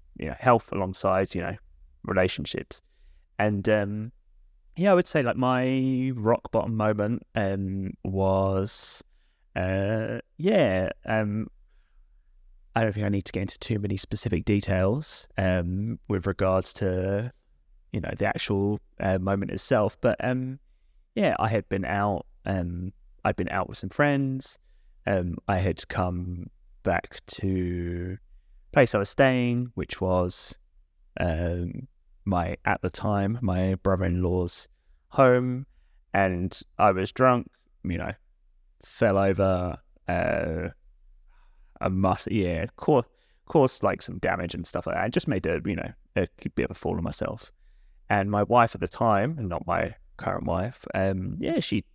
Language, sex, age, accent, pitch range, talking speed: English, male, 20-39, British, 90-110 Hz, 150 wpm